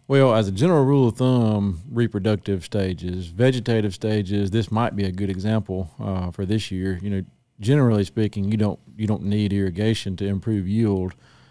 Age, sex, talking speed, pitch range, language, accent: 40-59, male, 175 wpm, 100-115 Hz, English, American